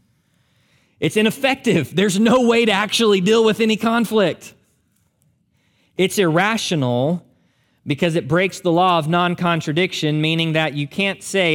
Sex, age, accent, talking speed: male, 20-39, American, 130 wpm